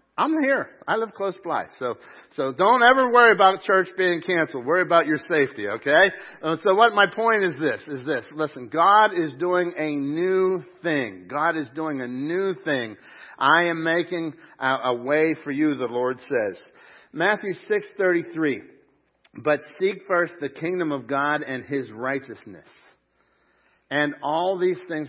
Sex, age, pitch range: male, 50-69, 155-205 Hz